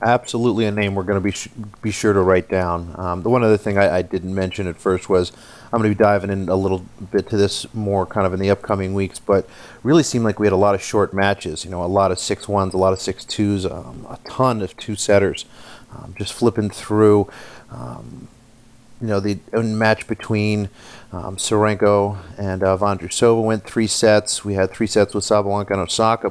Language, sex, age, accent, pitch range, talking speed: English, male, 40-59, American, 95-110 Hz, 225 wpm